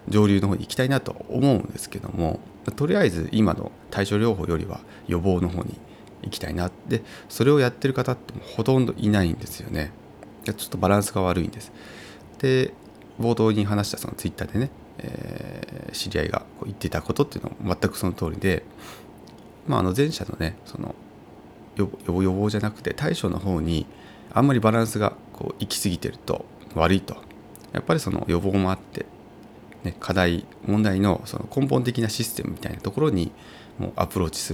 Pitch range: 90-115 Hz